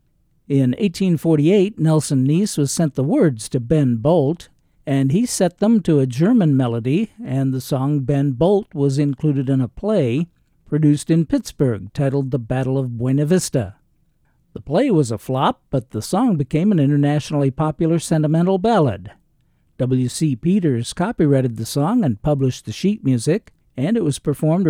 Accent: American